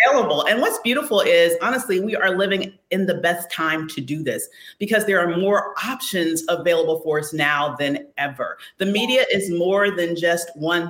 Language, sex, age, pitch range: English, female, 40-59, 165-220 Hz